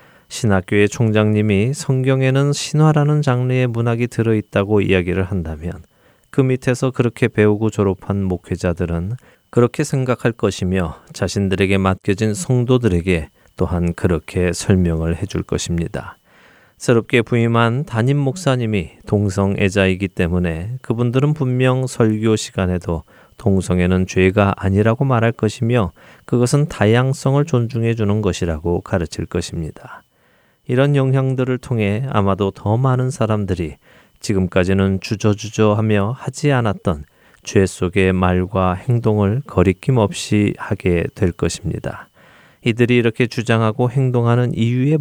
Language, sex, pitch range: Korean, male, 95-125 Hz